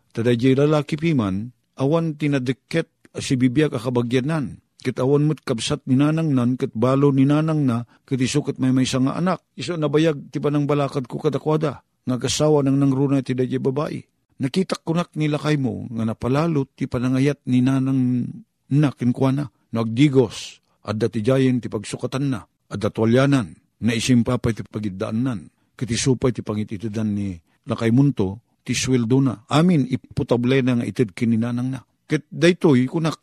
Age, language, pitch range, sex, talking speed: 50-69, Filipino, 120-150 Hz, male, 150 wpm